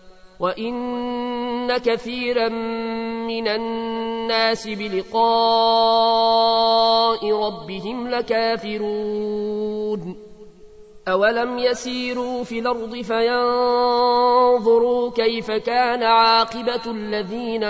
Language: Arabic